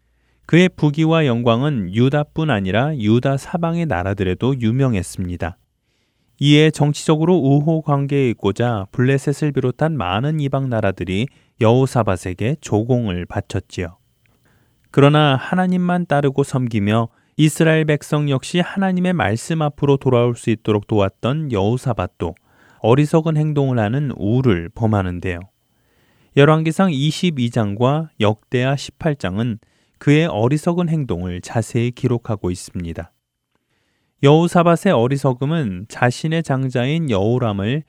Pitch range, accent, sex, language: 110-150 Hz, native, male, Korean